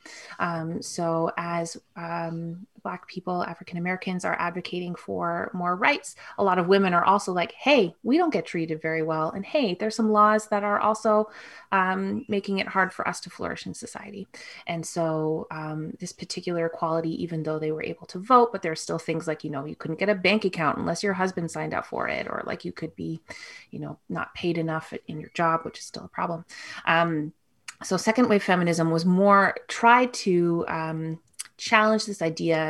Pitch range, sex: 160-195 Hz, female